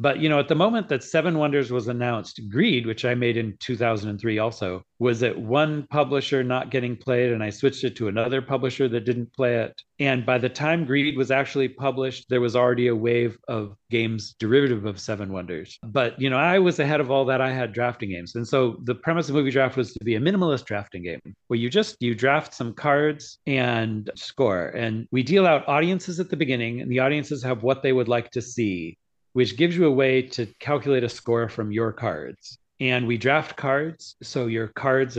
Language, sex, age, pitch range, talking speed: English, male, 40-59, 115-140 Hz, 220 wpm